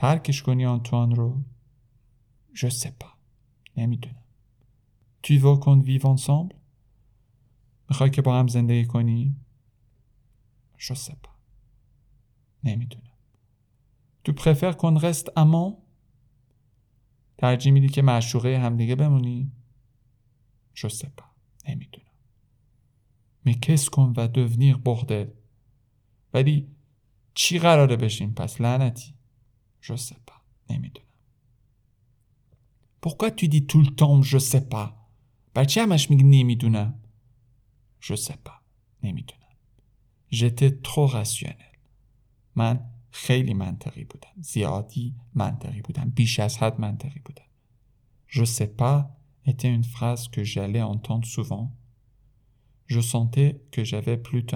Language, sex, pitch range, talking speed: Persian, male, 115-135 Hz, 90 wpm